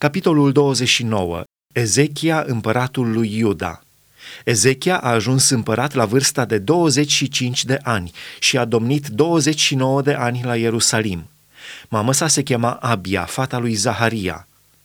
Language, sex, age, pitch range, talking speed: Romanian, male, 30-49, 120-150 Hz, 125 wpm